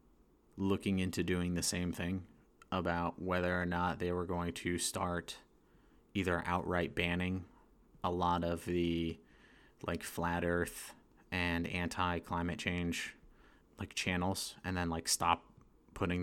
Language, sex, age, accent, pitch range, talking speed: English, male, 30-49, American, 85-95 Hz, 130 wpm